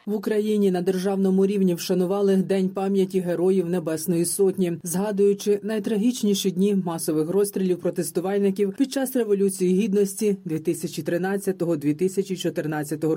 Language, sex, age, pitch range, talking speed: Ukrainian, female, 30-49, 180-215 Hz, 100 wpm